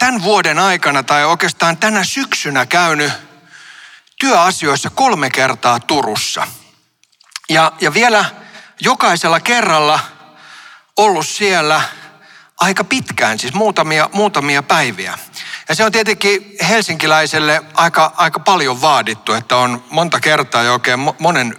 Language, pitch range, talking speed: Finnish, 145-205 Hz, 110 wpm